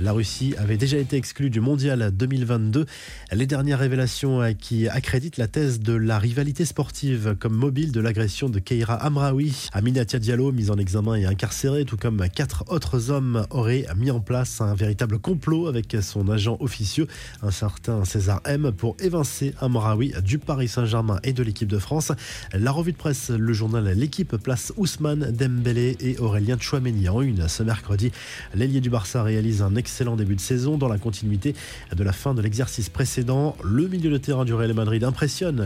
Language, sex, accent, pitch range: French, male, French, 110-135 Hz